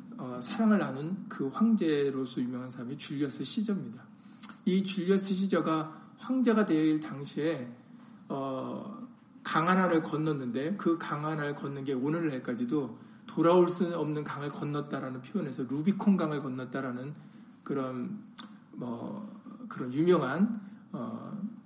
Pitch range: 150-225 Hz